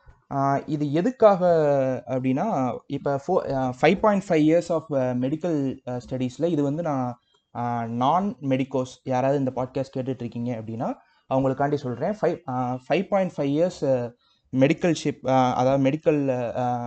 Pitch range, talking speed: 125-165 Hz, 115 wpm